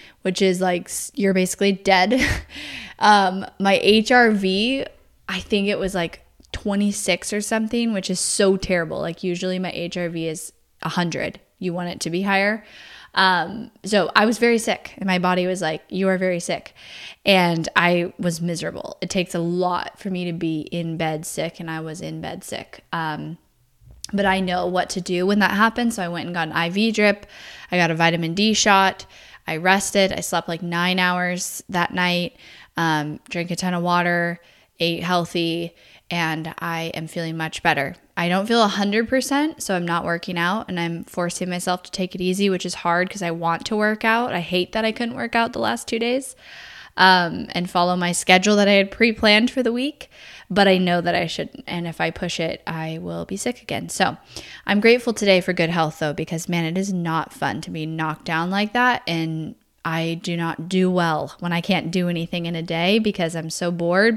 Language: English